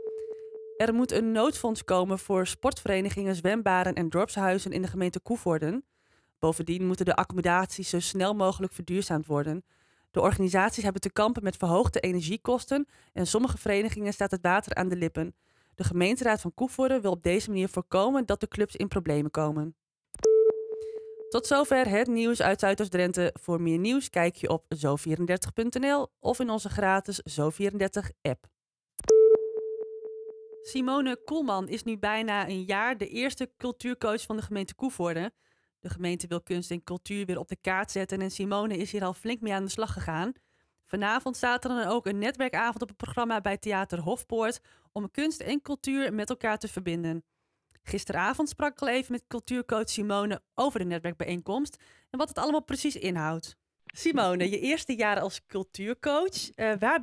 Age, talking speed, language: 20-39, 165 wpm, Dutch